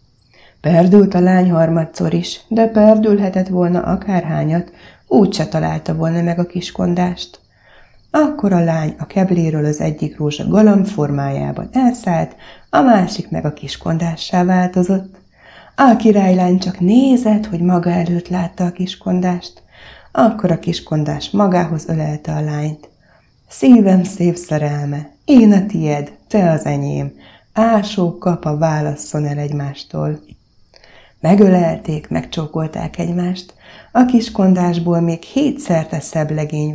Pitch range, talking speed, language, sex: 150-190 Hz, 120 wpm, Hungarian, female